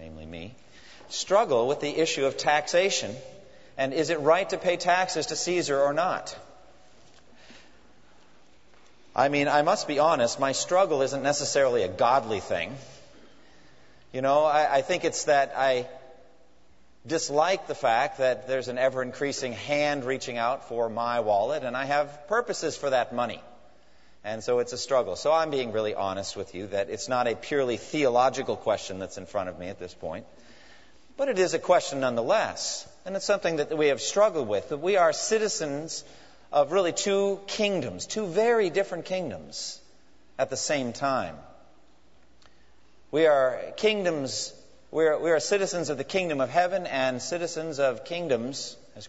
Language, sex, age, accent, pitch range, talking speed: English, male, 40-59, American, 130-175 Hz, 165 wpm